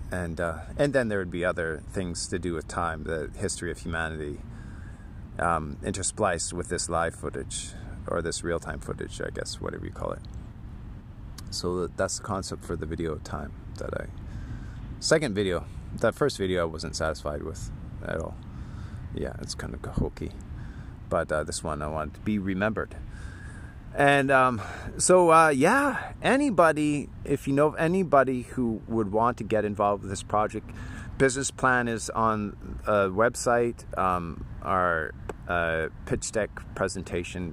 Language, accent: English, American